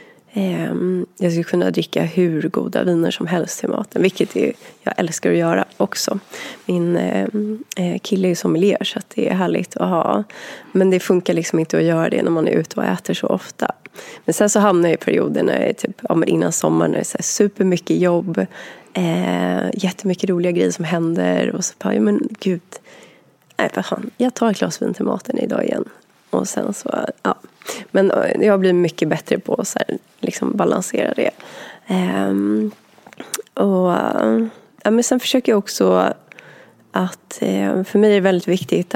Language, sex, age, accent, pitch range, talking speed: Swedish, female, 20-39, native, 160-195 Hz, 175 wpm